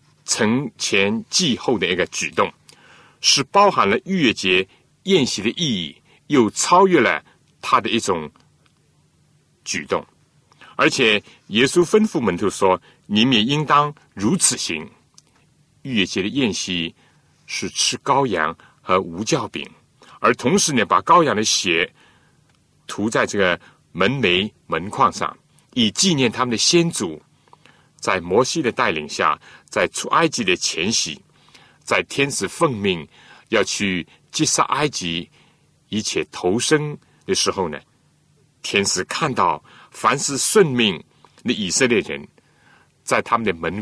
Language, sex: Chinese, male